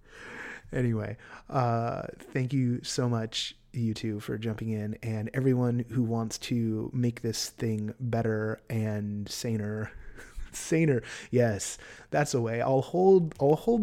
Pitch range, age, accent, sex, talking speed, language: 110-140 Hz, 30-49, American, male, 135 wpm, English